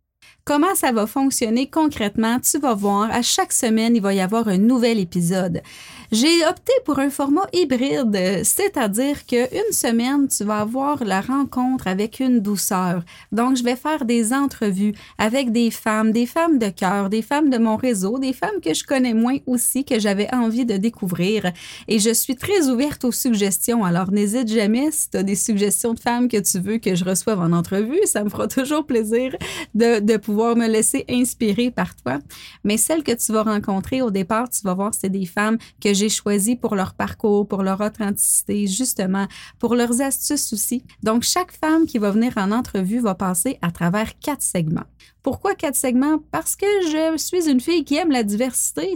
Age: 30-49